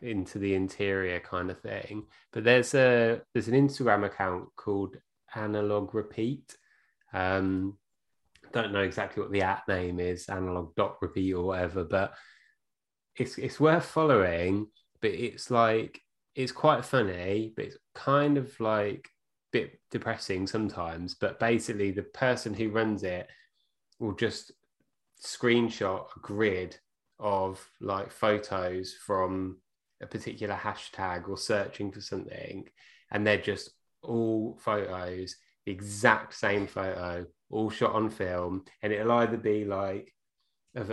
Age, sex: 20-39, male